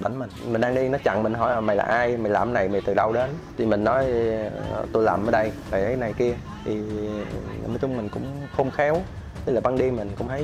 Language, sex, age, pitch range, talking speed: Vietnamese, male, 20-39, 100-130 Hz, 255 wpm